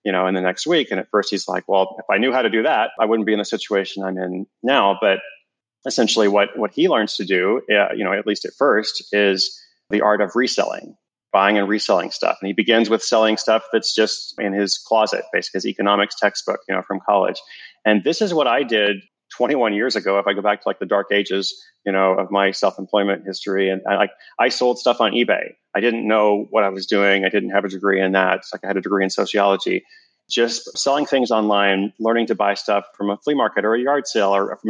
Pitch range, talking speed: 100-110 Hz, 250 wpm